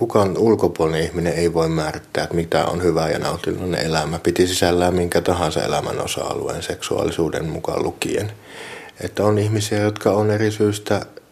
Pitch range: 80-95 Hz